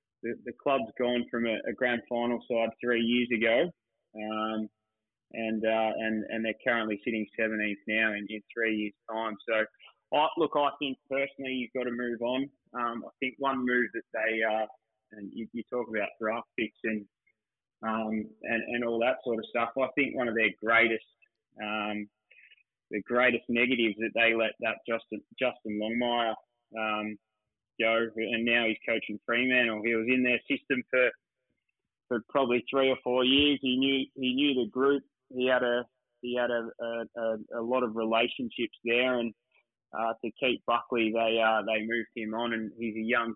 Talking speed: 185 wpm